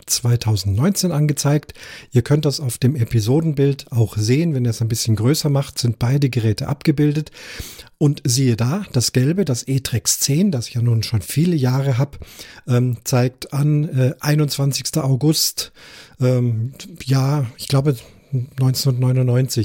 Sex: male